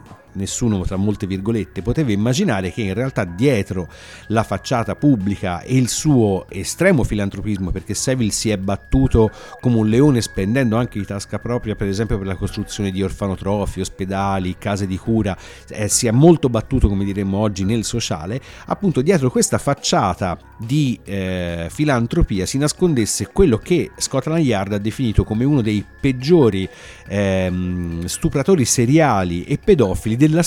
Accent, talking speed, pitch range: native, 150 wpm, 95-125 Hz